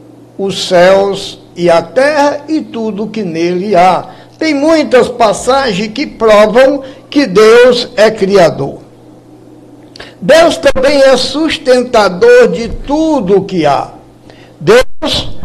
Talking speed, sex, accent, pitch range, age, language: 115 wpm, male, Brazilian, 180-260 Hz, 60-79, Portuguese